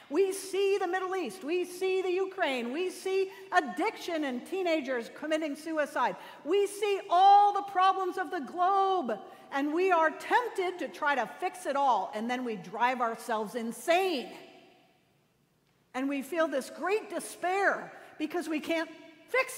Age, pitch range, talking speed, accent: 50-69, 240-350 Hz, 155 wpm, American